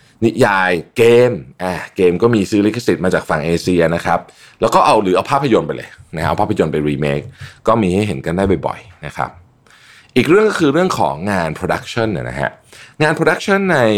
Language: Thai